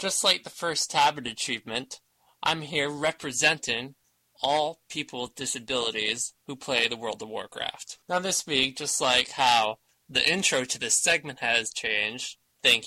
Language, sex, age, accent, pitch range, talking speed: English, male, 20-39, American, 125-185 Hz, 155 wpm